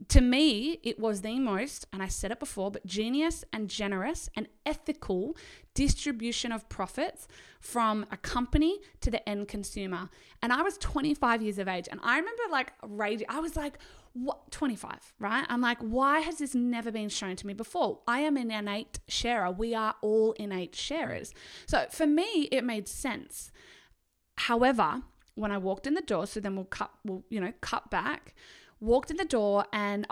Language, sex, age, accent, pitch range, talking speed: English, female, 20-39, Australian, 195-265 Hz, 185 wpm